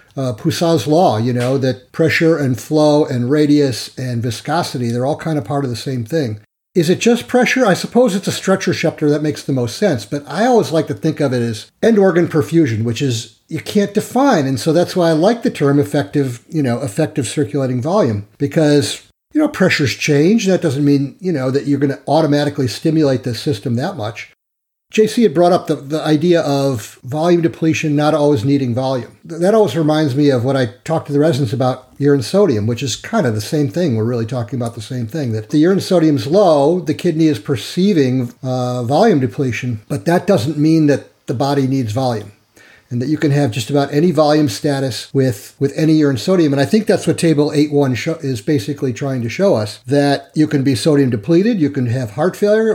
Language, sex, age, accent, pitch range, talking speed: English, male, 50-69, American, 130-165 Hz, 220 wpm